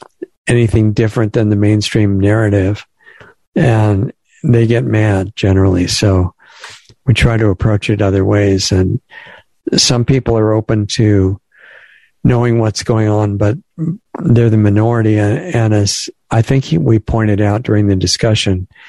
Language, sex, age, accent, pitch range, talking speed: English, male, 60-79, American, 105-120 Hz, 135 wpm